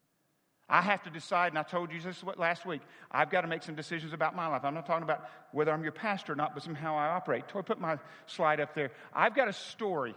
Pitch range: 165-210 Hz